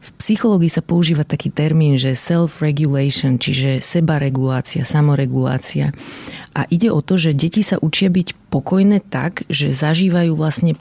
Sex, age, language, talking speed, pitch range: female, 30-49, Slovak, 140 wpm, 145-170 Hz